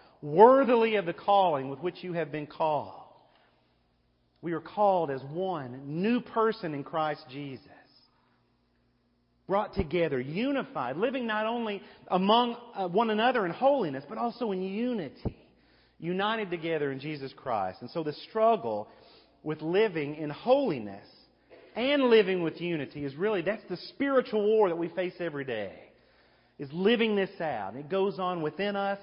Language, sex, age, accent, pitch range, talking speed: English, male, 40-59, American, 150-205 Hz, 150 wpm